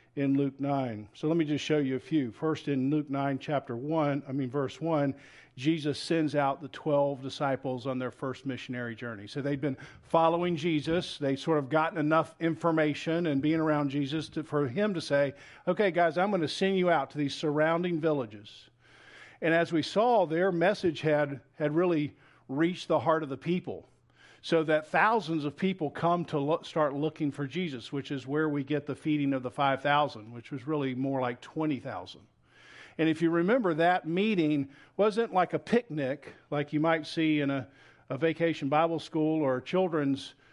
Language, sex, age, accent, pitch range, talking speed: English, male, 50-69, American, 140-165 Hz, 190 wpm